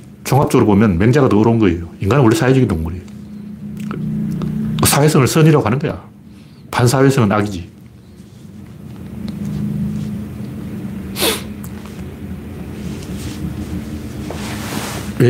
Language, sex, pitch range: Korean, male, 105-150 Hz